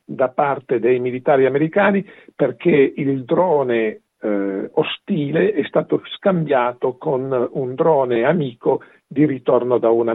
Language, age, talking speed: Italian, 50-69, 125 wpm